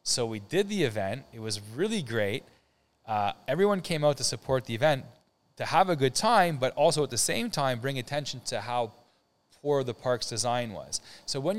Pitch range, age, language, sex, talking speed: 110-140 Hz, 20-39, French, male, 200 wpm